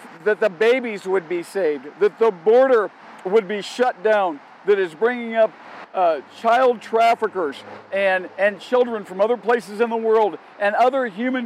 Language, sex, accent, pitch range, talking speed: English, male, American, 200-250 Hz, 170 wpm